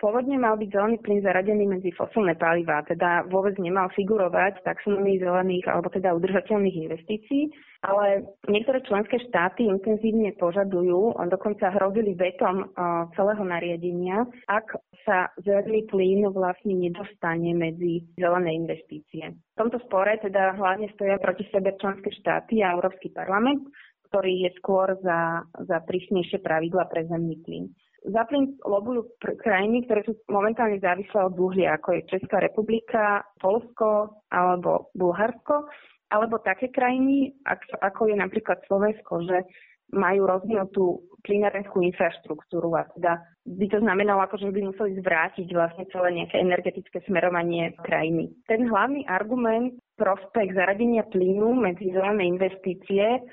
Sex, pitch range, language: female, 180-215 Hz, Slovak